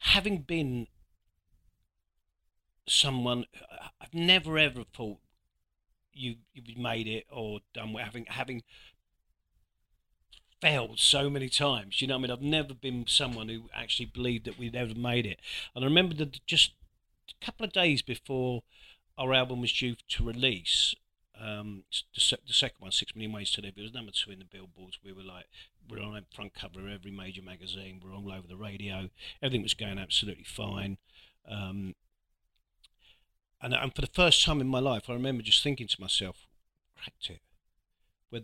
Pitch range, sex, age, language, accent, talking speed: 95-130 Hz, male, 40-59, English, British, 170 wpm